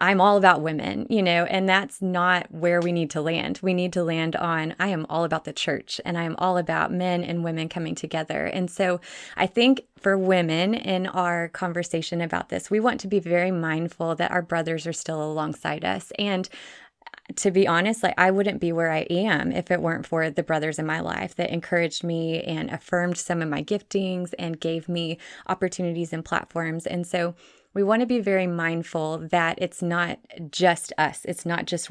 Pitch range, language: 165-190 Hz, English